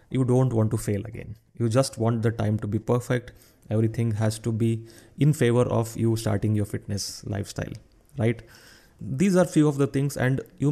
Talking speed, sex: 195 wpm, male